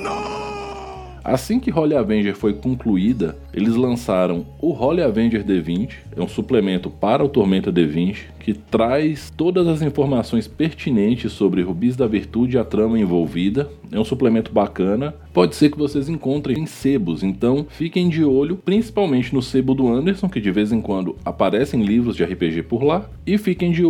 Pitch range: 100-150 Hz